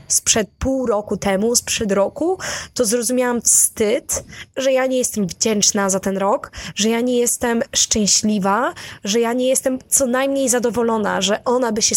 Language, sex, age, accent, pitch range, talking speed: Polish, female, 20-39, native, 200-260 Hz, 165 wpm